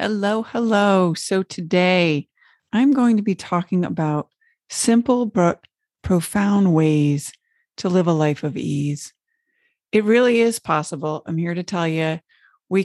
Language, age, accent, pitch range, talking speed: English, 40-59, American, 170-240 Hz, 140 wpm